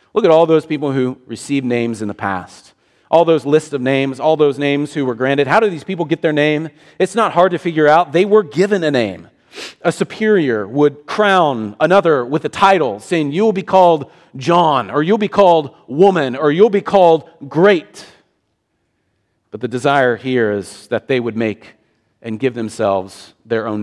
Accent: American